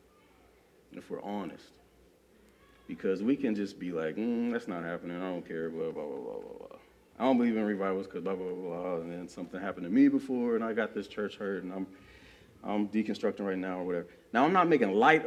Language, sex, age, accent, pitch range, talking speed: English, male, 30-49, American, 95-120 Hz, 230 wpm